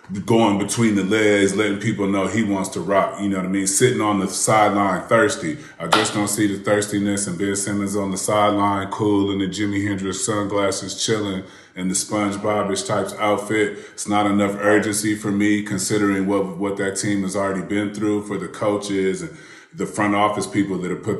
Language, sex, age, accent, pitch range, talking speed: English, male, 30-49, American, 95-105 Hz, 200 wpm